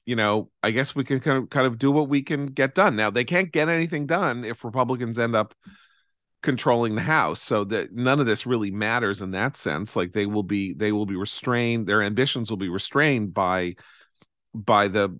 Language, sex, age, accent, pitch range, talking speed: English, male, 40-59, American, 105-140 Hz, 215 wpm